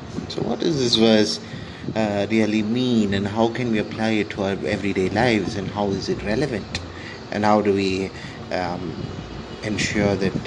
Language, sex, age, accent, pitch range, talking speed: English, male, 30-49, Indian, 95-110 Hz, 170 wpm